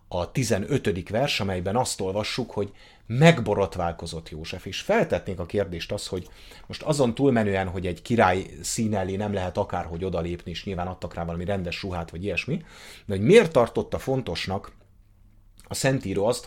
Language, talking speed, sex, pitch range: English, 160 wpm, male, 85-105 Hz